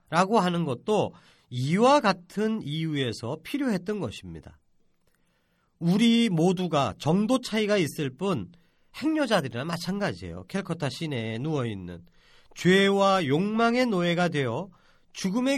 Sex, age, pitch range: male, 40-59, 140-215 Hz